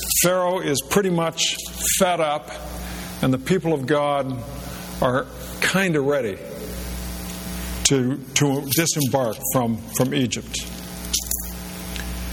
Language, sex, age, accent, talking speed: English, male, 60-79, American, 95 wpm